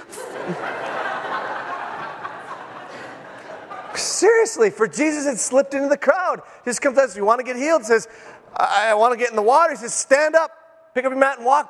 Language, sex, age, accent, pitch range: English, male, 30-49, American, 180-255 Hz